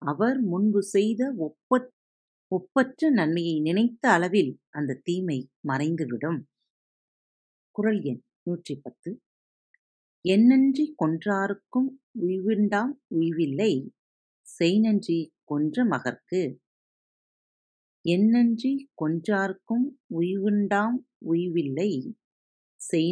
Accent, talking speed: native, 50 wpm